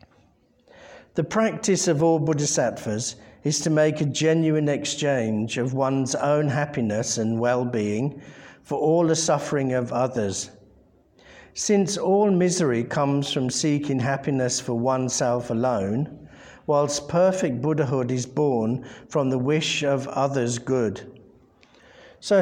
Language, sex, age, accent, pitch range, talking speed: English, male, 50-69, British, 120-155 Hz, 125 wpm